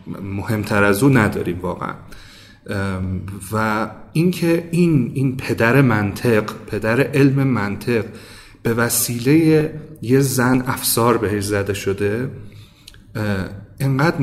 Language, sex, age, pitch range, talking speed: Persian, male, 30-49, 105-135 Hz, 95 wpm